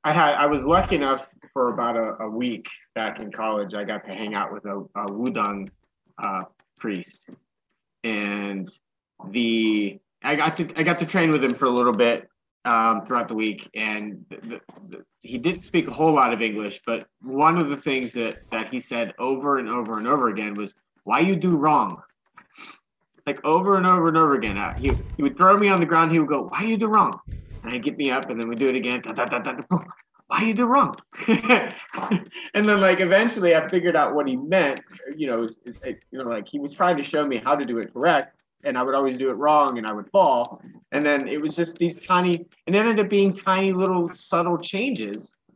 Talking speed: 230 wpm